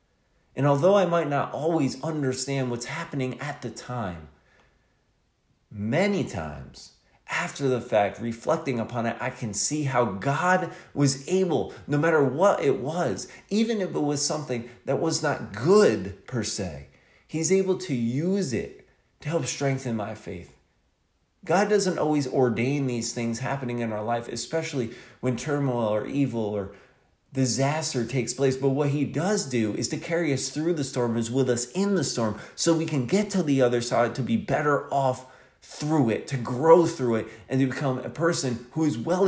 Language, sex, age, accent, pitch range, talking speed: English, male, 30-49, American, 120-160 Hz, 175 wpm